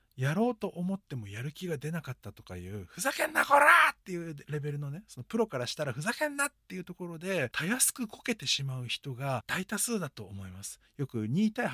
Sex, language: male, Japanese